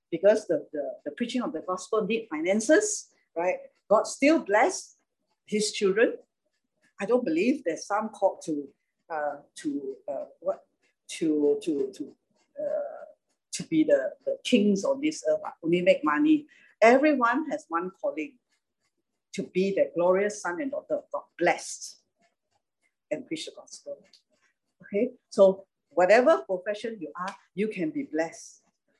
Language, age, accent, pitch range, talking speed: English, 50-69, Malaysian, 190-295 Hz, 145 wpm